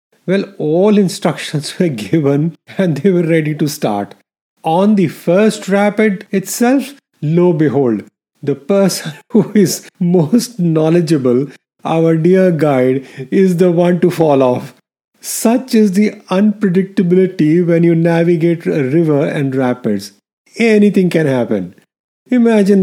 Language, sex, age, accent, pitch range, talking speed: English, male, 30-49, Indian, 145-195 Hz, 125 wpm